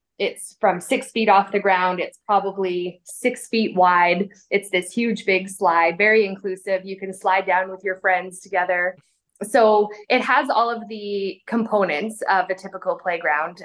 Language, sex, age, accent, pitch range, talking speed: English, female, 20-39, American, 180-215 Hz, 165 wpm